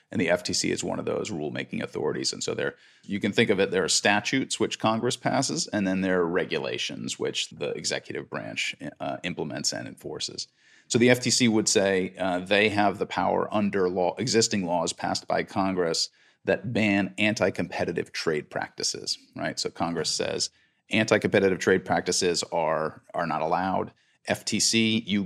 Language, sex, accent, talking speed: English, male, American, 165 wpm